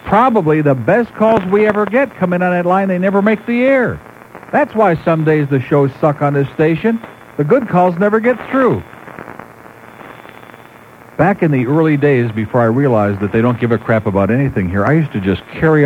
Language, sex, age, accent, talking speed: English, male, 60-79, American, 210 wpm